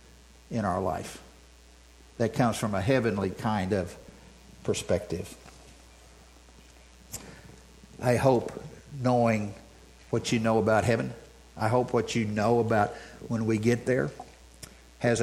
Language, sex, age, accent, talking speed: English, male, 60-79, American, 120 wpm